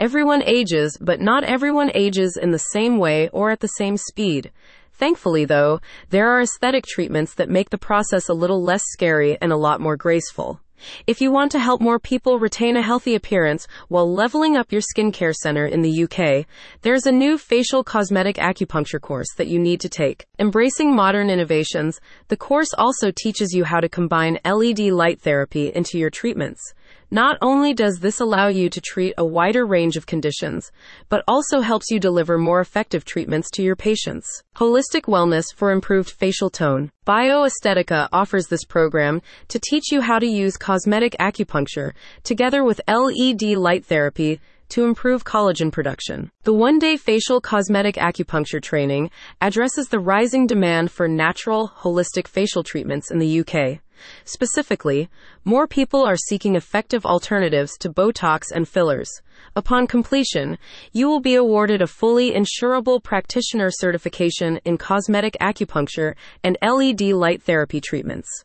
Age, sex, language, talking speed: 30-49, female, English, 160 wpm